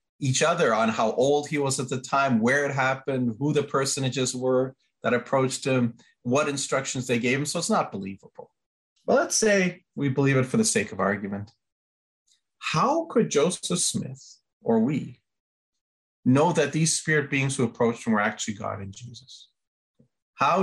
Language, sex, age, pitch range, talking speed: English, male, 40-59, 105-145 Hz, 175 wpm